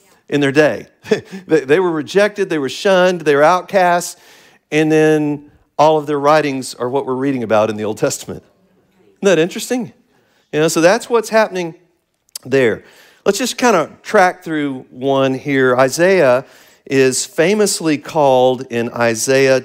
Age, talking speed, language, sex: 50-69, 155 wpm, English, male